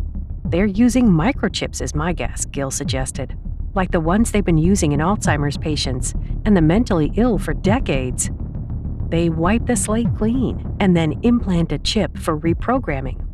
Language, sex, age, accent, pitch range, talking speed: English, female, 50-69, American, 140-210 Hz, 155 wpm